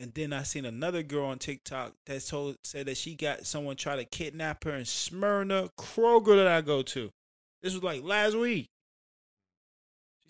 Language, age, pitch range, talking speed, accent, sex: English, 20-39, 110-140 Hz, 185 wpm, American, male